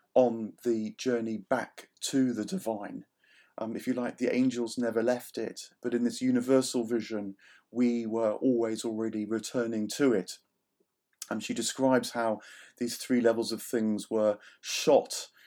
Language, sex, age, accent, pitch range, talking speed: English, male, 40-59, British, 110-125 Hz, 150 wpm